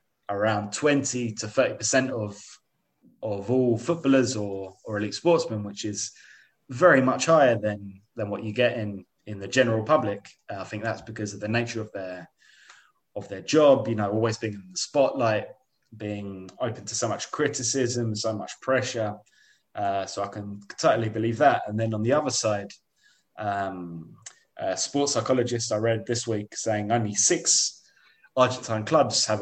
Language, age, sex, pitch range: English, 20-39, male, 105-120 Hz